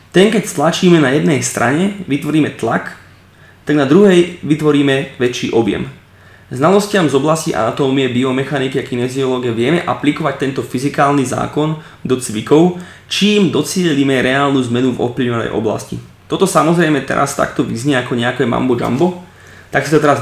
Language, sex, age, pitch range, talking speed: Slovak, male, 20-39, 125-155 Hz, 140 wpm